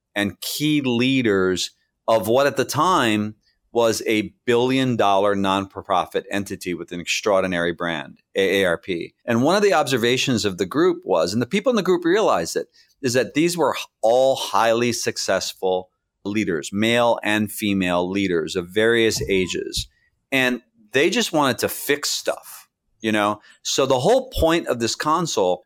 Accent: American